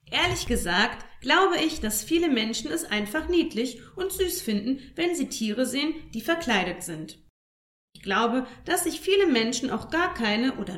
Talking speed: 165 wpm